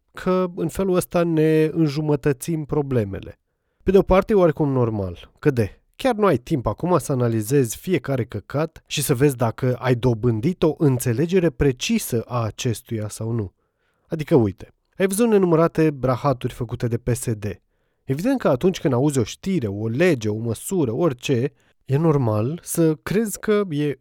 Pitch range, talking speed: 120-180 Hz, 160 wpm